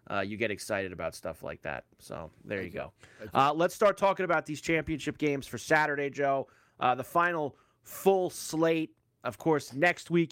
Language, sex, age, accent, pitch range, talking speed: English, male, 30-49, American, 125-155 Hz, 185 wpm